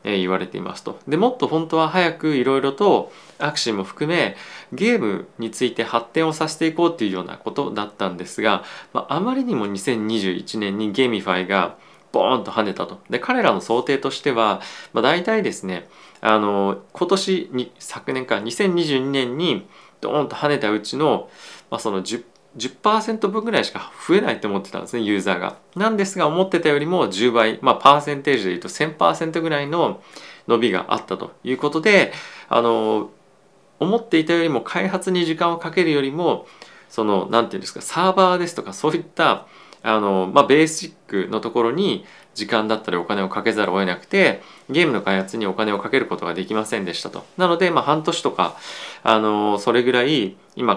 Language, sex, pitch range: Japanese, male, 105-170 Hz